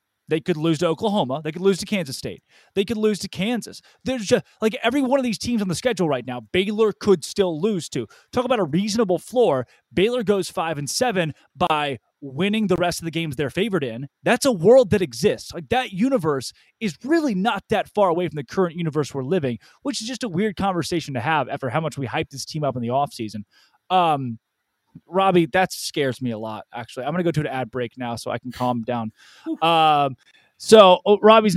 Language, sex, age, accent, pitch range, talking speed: English, male, 20-39, American, 140-205 Hz, 225 wpm